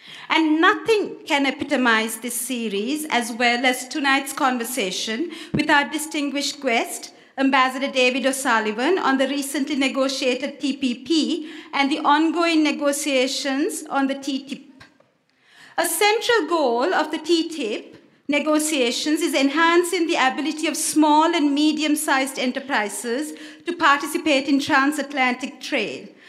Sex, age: female, 50-69